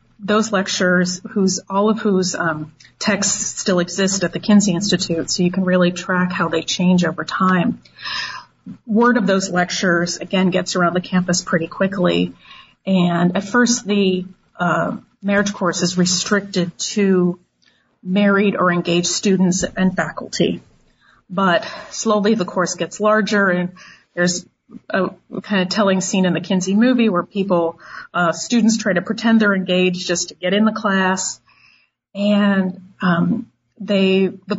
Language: English